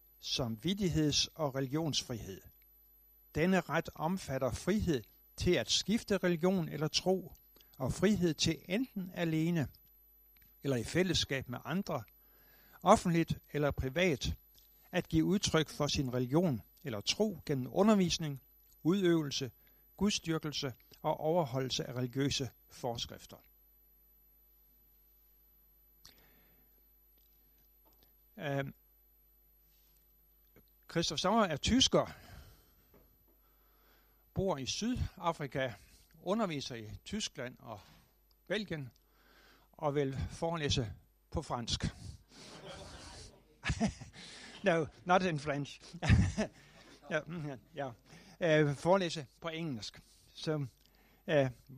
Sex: male